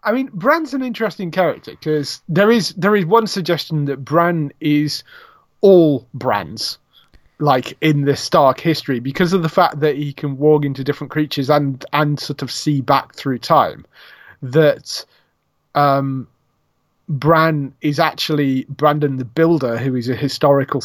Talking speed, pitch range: 155 wpm, 135-160 Hz